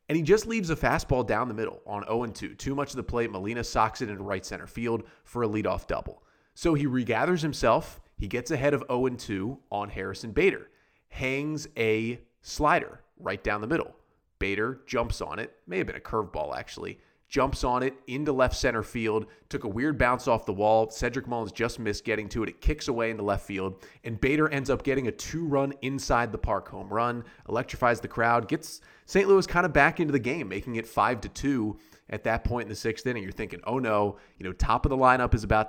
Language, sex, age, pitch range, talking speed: English, male, 30-49, 110-135 Hz, 220 wpm